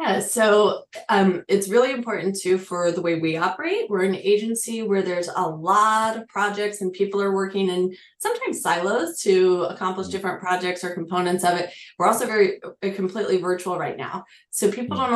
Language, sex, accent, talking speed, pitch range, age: English, female, American, 180 wpm, 180-210 Hz, 20-39